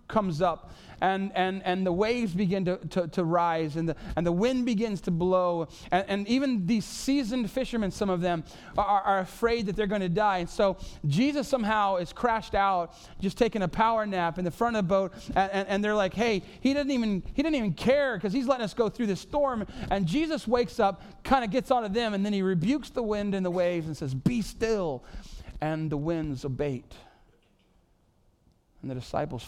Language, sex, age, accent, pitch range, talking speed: English, male, 30-49, American, 125-205 Hz, 215 wpm